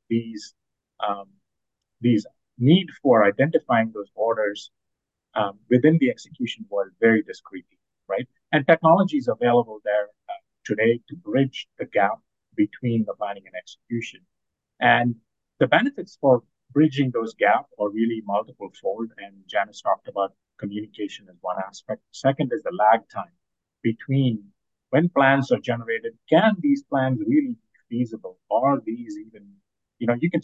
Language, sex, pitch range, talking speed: English, male, 110-165 Hz, 145 wpm